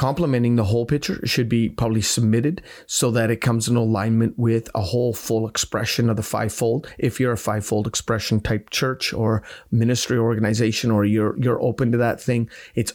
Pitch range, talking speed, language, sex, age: 110-130 Hz, 190 wpm, English, male, 30-49